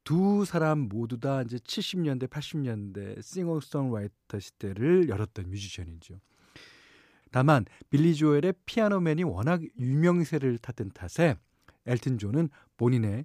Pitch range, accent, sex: 105-160 Hz, native, male